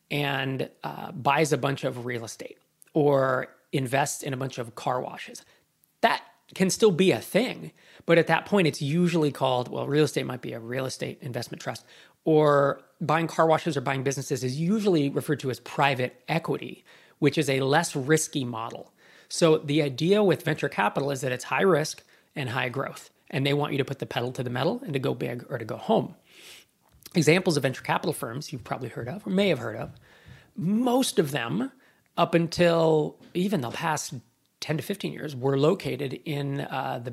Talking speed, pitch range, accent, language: 200 wpm, 135-165 Hz, American, English